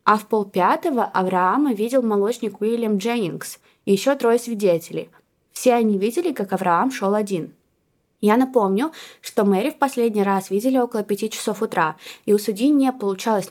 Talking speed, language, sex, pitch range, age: 160 wpm, Russian, female, 195-255 Hz, 20-39